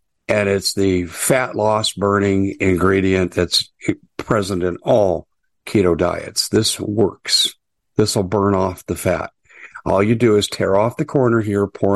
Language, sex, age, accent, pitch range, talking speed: English, male, 50-69, American, 100-125 Hz, 155 wpm